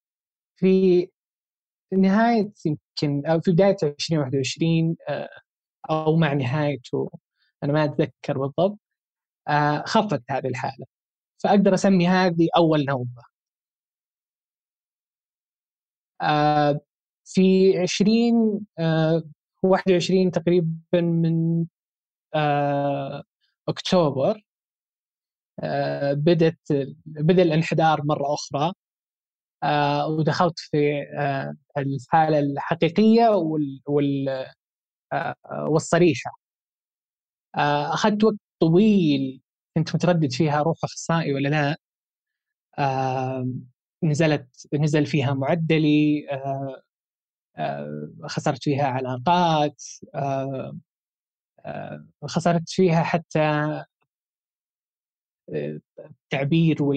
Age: 20-39